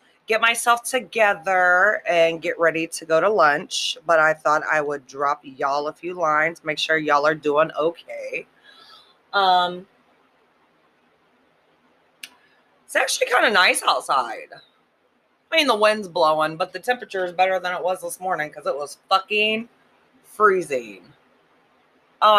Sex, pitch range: female, 155-210 Hz